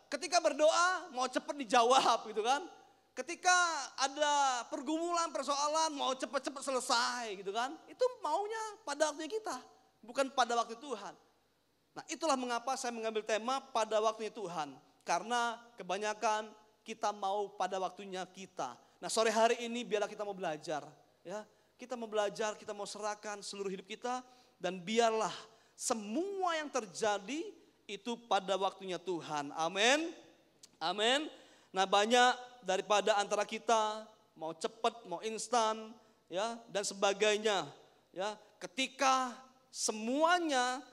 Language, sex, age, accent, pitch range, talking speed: Indonesian, male, 30-49, native, 210-265 Hz, 125 wpm